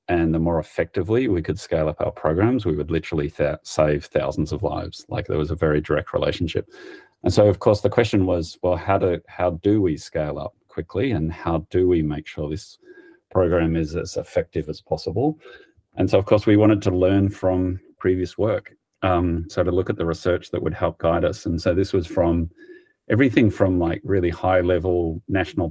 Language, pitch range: English, 85-105 Hz